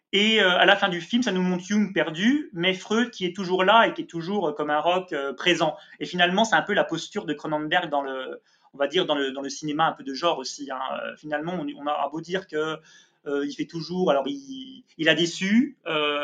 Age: 30-49